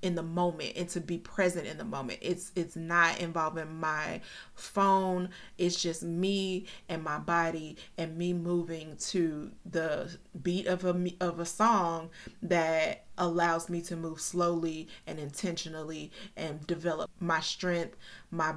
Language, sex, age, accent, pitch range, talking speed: English, female, 20-39, American, 165-185 Hz, 145 wpm